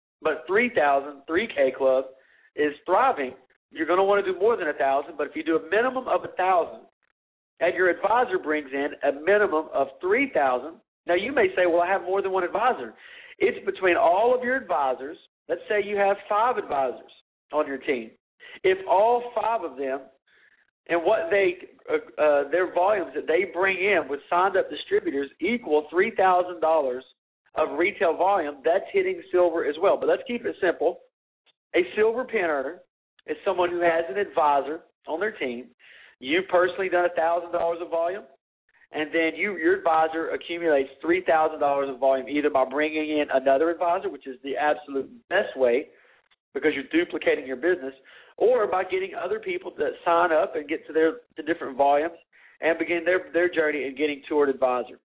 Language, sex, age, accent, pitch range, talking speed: English, male, 50-69, American, 145-215 Hz, 175 wpm